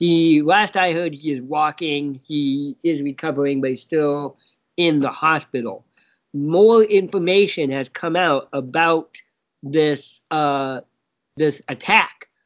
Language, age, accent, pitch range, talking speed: English, 40-59, American, 145-190 Hz, 125 wpm